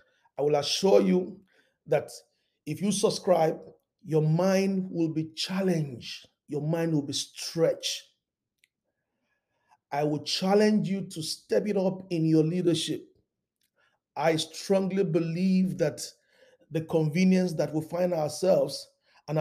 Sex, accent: male, Nigerian